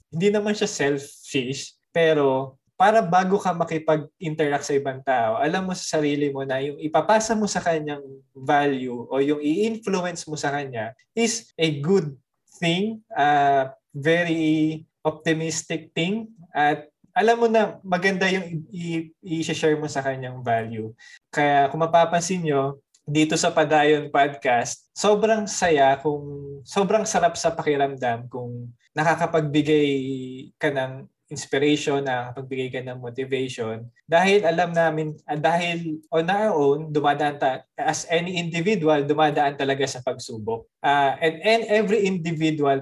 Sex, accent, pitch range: male, native, 140-180 Hz